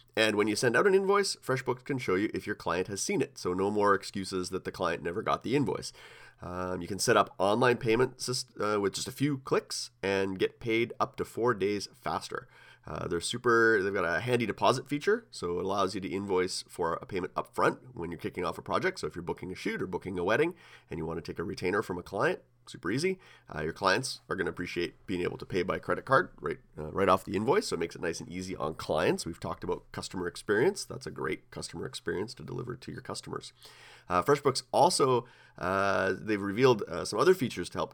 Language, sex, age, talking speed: English, male, 30-49, 240 wpm